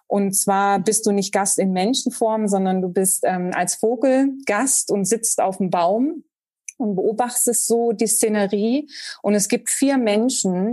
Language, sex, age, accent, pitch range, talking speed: German, female, 30-49, German, 185-225 Hz, 170 wpm